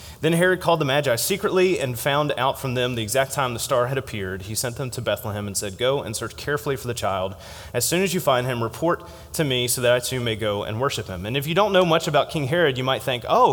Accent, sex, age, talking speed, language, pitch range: American, male, 30-49, 280 wpm, English, 115-145 Hz